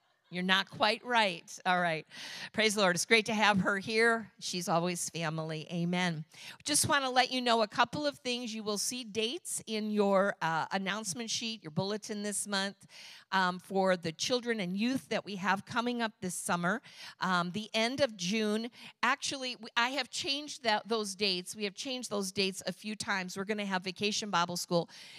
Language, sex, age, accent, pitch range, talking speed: English, female, 50-69, American, 185-230 Hz, 195 wpm